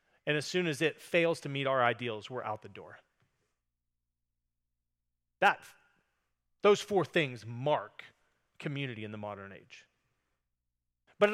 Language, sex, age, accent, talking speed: English, male, 30-49, American, 130 wpm